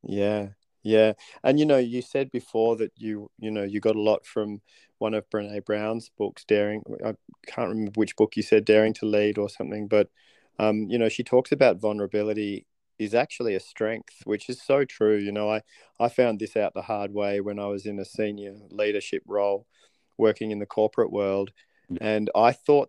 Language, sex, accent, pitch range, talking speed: English, male, Australian, 100-115 Hz, 200 wpm